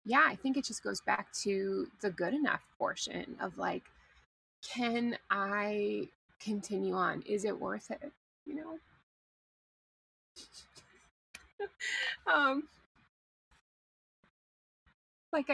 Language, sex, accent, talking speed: English, female, American, 100 wpm